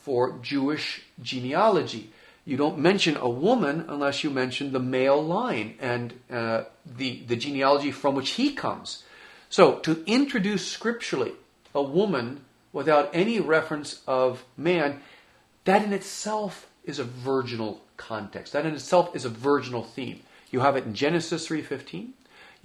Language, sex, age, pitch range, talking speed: English, male, 40-59, 135-185 Hz, 145 wpm